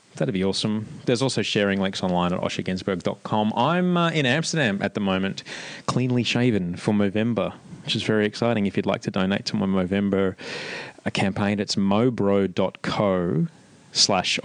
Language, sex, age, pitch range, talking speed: English, male, 20-39, 95-115 Hz, 155 wpm